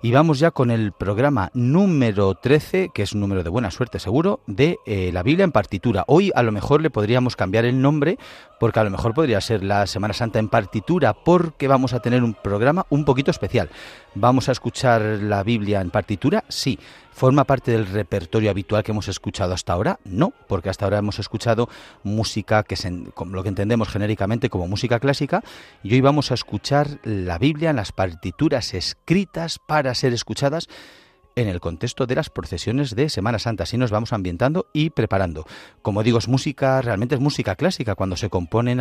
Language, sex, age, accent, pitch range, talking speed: Spanish, male, 40-59, Spanish, 100-130 Hz, 195 wpm